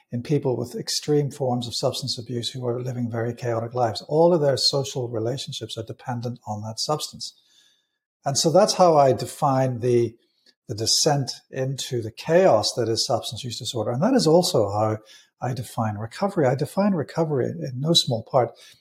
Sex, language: male, English